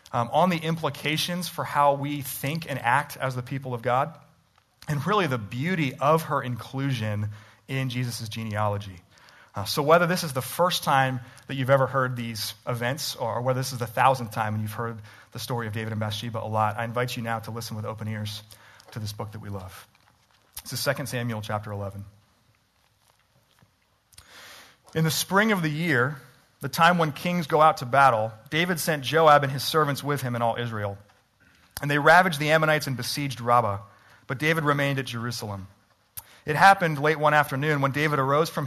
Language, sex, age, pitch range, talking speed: English, male, 30-49, 115-155 Hz, 195 wpm